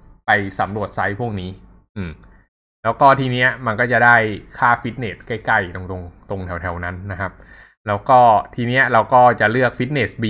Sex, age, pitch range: male, 20-39, 95-120 Hz